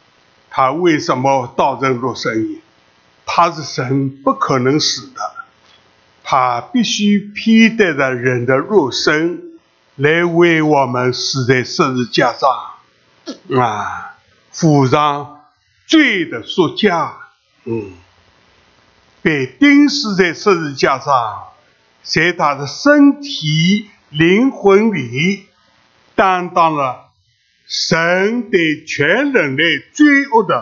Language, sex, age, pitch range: English, male, 60-79, 115-190 Hz